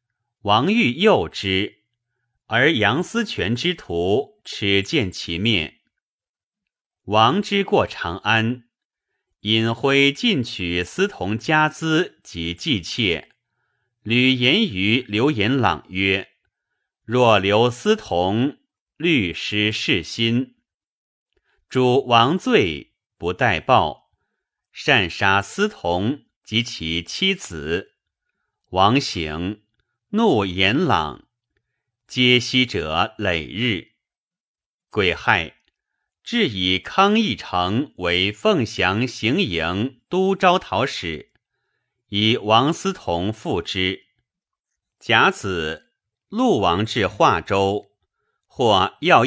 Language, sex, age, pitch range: Chinese, male, 30-49, 95-130 Hz